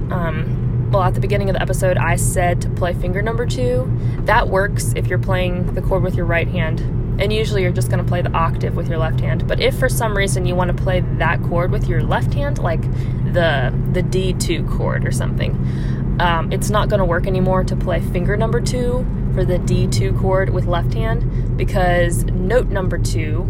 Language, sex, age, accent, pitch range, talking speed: English, female, 20-39, American, 100-140 Hz, 215 wpm